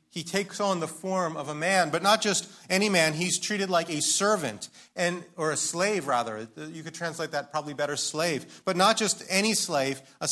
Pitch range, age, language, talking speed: 130-180 Hz, 40-59, English, 210 wpm